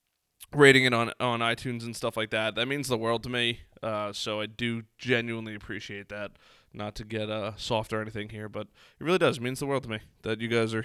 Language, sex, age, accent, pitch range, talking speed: English, male, 20-39, American, 115-140 Hz, 245 wpm